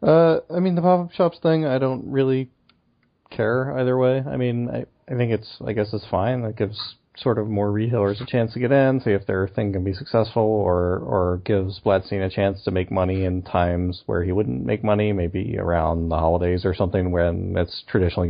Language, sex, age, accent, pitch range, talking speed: English, male, 30-49, American, 90-120 Hz, 215 wpm